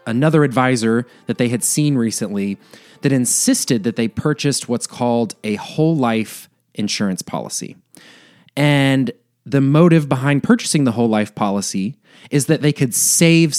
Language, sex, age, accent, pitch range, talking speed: English, male, 20-39, American, 115-150 Hz, 145 wpm